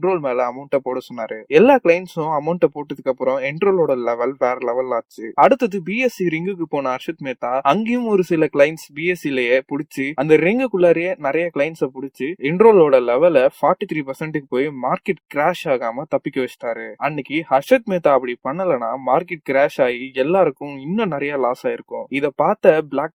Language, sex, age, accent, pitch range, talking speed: Tamil, male, 20-39, native, 130-180 Hz, 55 wpm